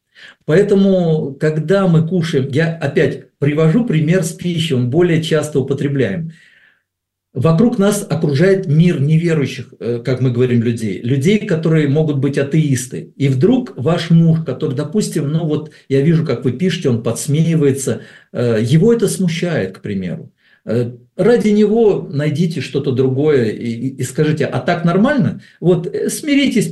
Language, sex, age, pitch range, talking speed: Russian, male, 50-69, 130-180 Hz, 135 wpm